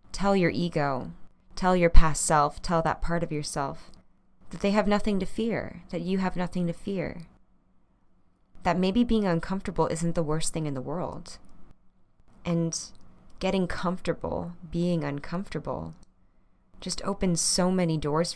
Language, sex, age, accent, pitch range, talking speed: English, female, 20-39, American, 145-175 Hz, 145 wpm